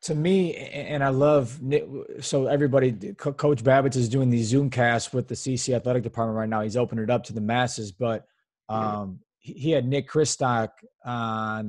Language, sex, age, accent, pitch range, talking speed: English, male, 20-39, American, 125-155 Hz, 195 wpm